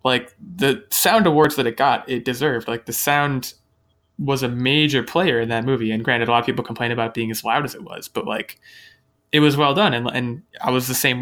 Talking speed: 245 wpm